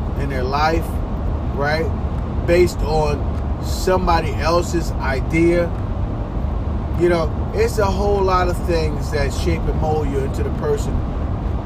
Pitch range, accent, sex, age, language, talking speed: 75-95 Hz, American, male, 30-49, English, 130 wpm